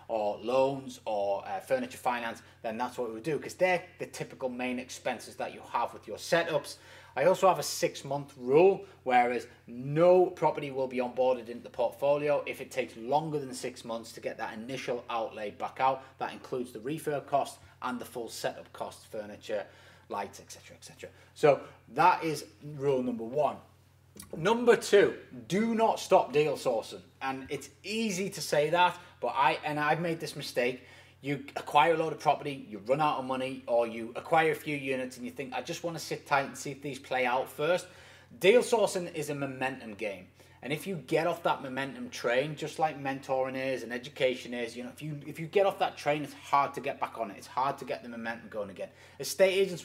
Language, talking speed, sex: English, 210 wpm, male